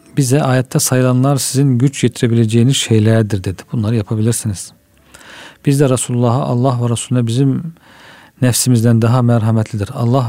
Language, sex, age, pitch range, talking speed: Turkish, male, 40-59, 115-130 Hz, 120 wpm